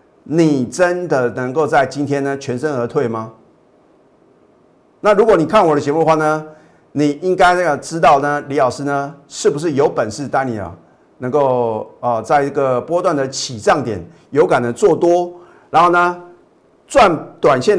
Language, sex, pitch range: Chinese, male, 130-175 Hz